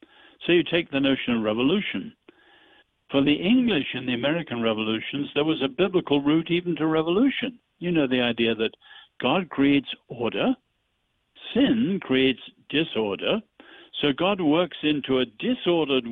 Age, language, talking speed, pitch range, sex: 60-79, English, 145 wpm, 120-175 Hz, male